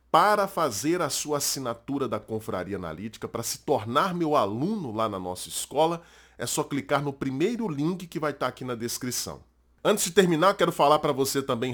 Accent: Brazilian